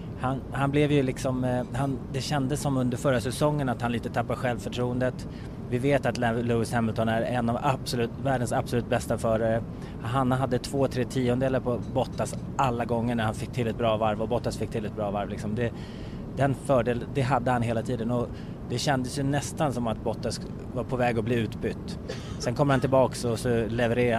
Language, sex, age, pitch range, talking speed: Swedish, male, 20-39, 115-130 Hz, 205 wpm